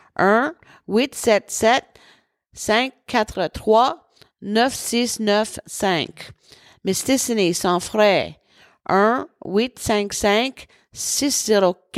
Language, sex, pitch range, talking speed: English, female, 200-245 Hz, 80 wpm